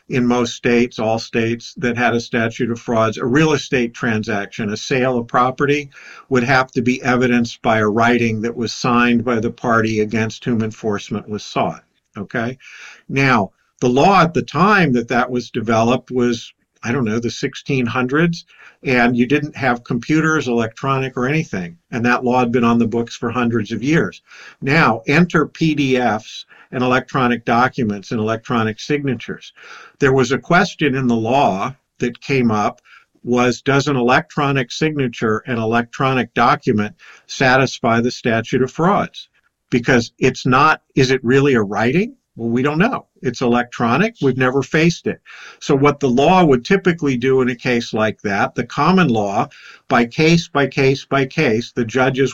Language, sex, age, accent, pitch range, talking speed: English, male, 50-69, American, 120-140 Hz, 170 wpm